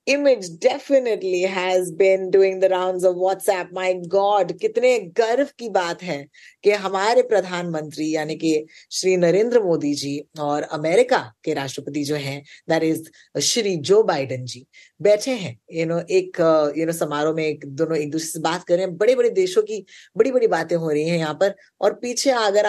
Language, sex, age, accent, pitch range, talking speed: Hindi, female, 20-39, native, 165-245 Hz, 85 wpm